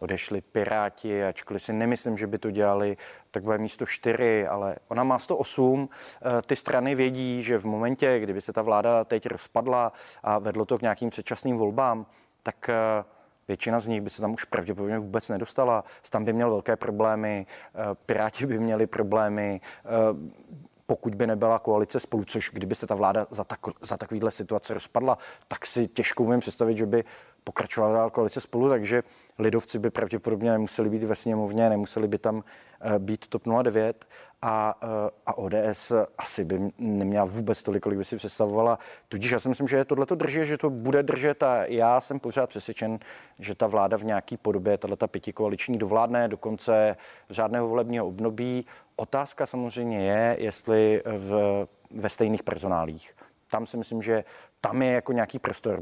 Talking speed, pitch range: 170 wpm, 105-120 Hz